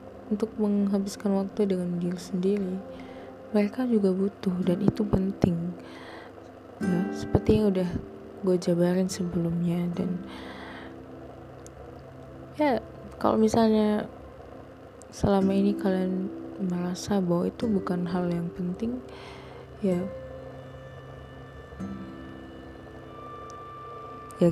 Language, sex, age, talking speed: Indonesian, female, 20-39, 85 wpm